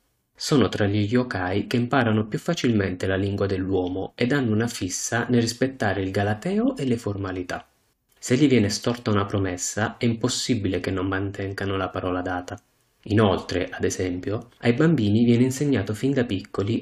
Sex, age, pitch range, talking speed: male, 30-49, 95-120 Hz, 165 wpm